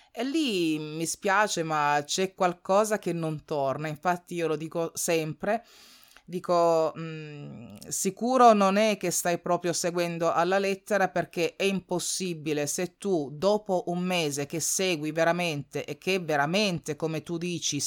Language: Italian